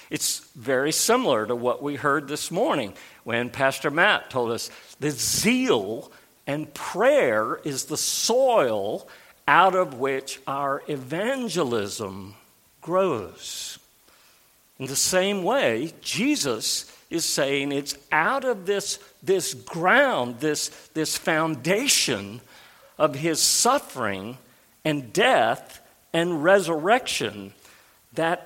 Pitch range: 145-220 Hz